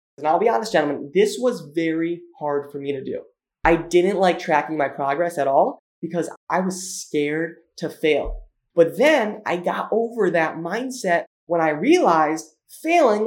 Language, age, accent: English, 20-39, American